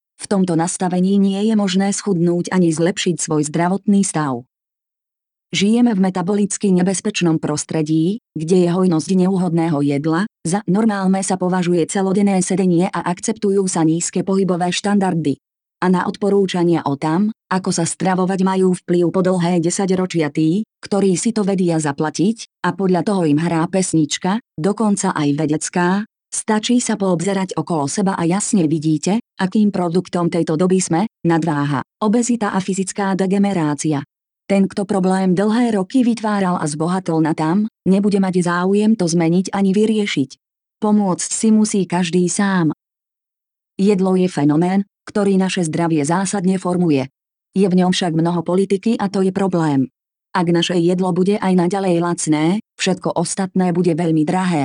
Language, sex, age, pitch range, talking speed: Slovak, female, 30-49, 165-200 Hz, 145 wpm